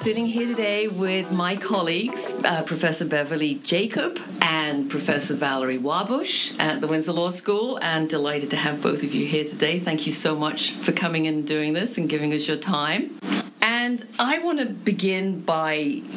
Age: 50-69